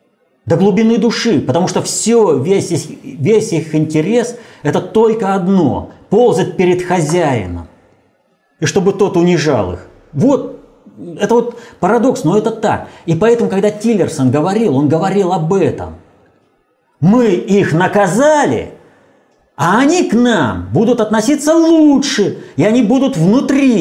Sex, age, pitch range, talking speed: male, 30-49, 135-220 Hz, 130 wpm